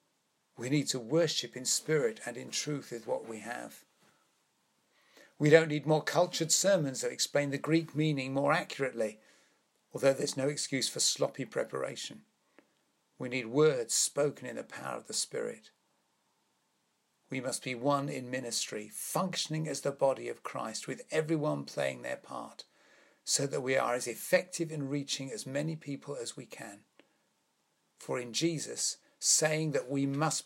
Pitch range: 130-155 Hz